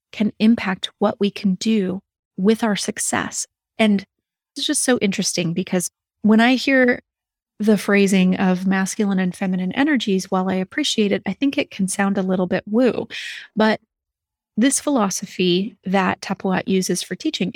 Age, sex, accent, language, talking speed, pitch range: 30-49, female, American, English, 155 wpm, 190-235 Hz